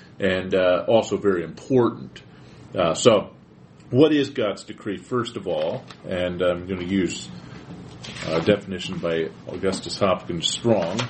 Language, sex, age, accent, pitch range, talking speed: English, male, 50-69, American, 95-140 Hz, 130 wpm